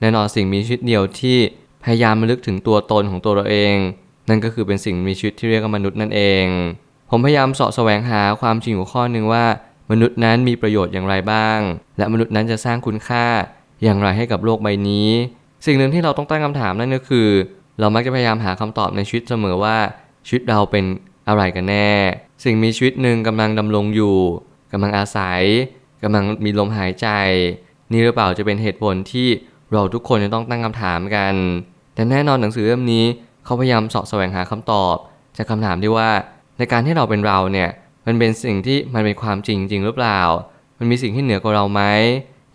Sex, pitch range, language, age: male, 100-120 Hz, Thai, 20-39